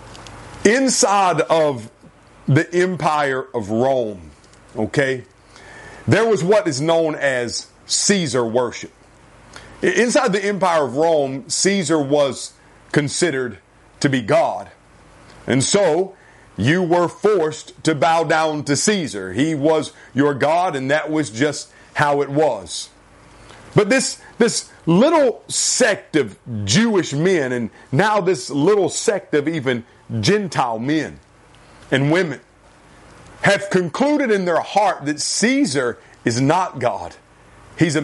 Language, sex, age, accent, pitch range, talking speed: English, male, 40-59, American, 130-185 Hz, 125 wpm